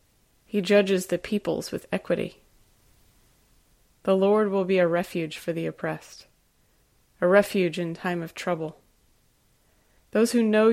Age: 20-39